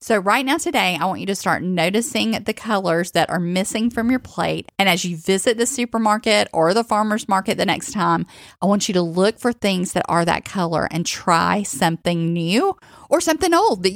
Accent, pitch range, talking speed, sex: American, 190-270 Hz, 215 wpm, female